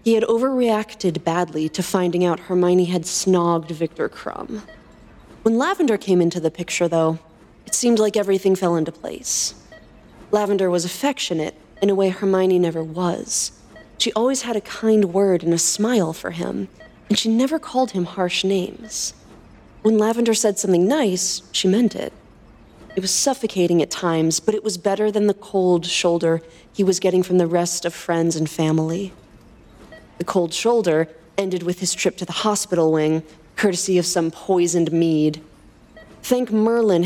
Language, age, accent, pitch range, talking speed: English, 30-49, American, 170-215 Hz, 165 wpm